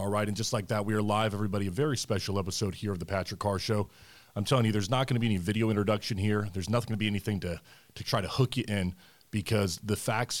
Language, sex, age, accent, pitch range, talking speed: English, male, 30-49, American, 95-115 Hz, 270 wpm